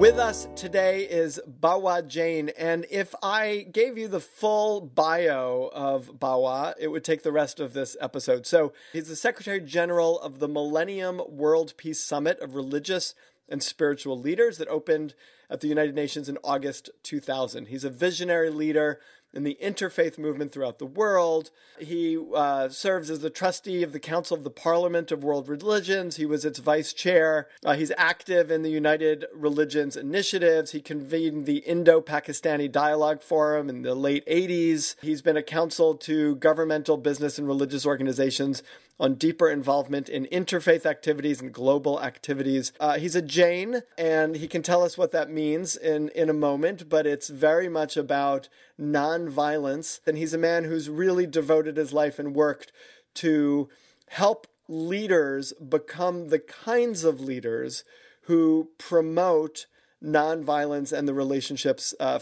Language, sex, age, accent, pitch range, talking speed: English, male, 40-59, American, 145-170 Hz, 160 wpm